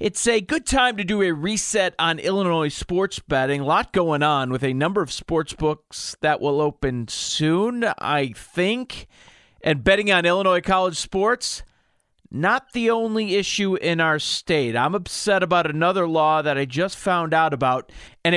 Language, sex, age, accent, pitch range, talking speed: English, male, 40-59, American, 145-195 Hz, 175 wpm